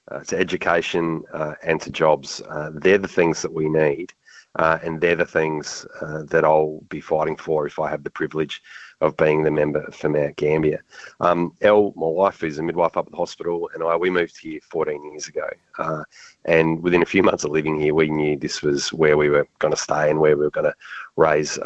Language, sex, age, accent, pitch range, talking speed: English, male, 30-49, Australian, 75-85 Hz, 225 wpm